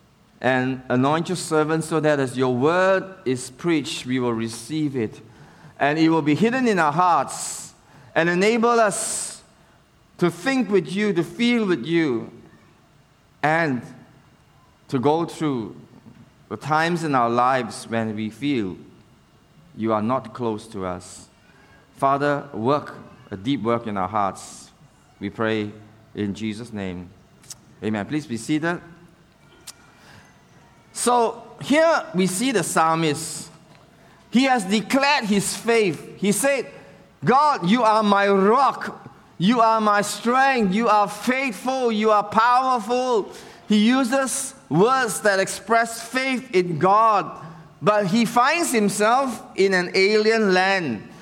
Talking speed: 130 wpm